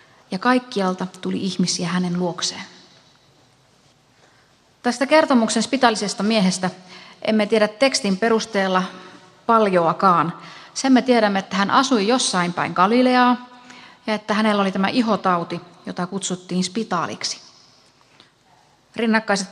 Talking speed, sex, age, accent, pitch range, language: 105 wpm, female, 30-49, native, 185-220 Hz, Finnish